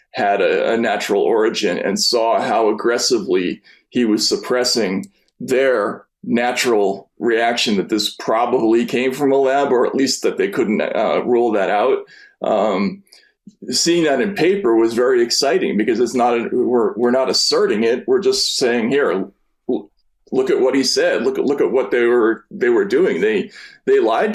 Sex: male